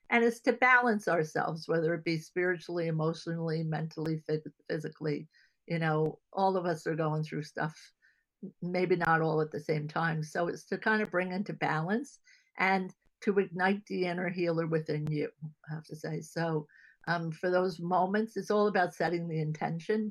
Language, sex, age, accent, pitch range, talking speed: English, female, 50-69, American, 155-180 Hz, 175 wpm